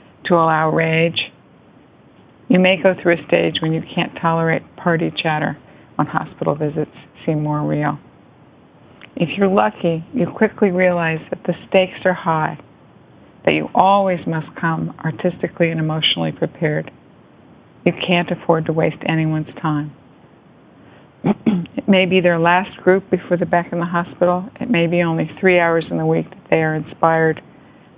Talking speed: 155 wpm